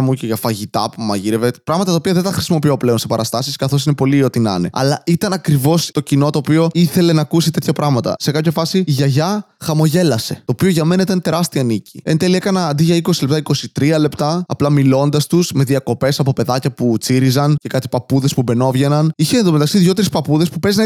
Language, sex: Greek, male